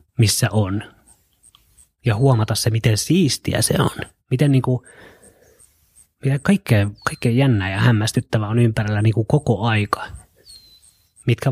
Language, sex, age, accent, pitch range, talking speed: Finnish, male, 30-49, native, 100-125 Hz, 115 wpm